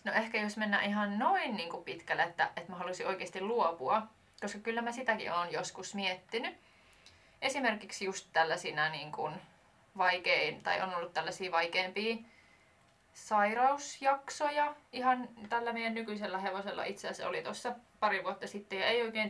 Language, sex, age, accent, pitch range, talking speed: Finnish, female, 20-39, native, 180-225 Hz, 150 wpm